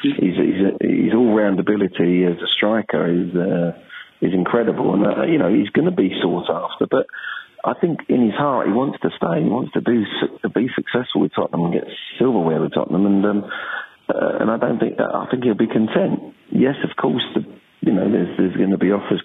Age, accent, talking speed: 40-59, British, 225 wpm